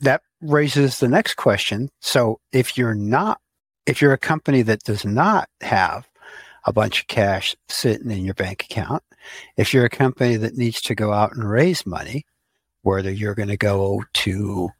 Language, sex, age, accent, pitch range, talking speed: English, male, 60-79, American, 105-125 Hz, 180 wpm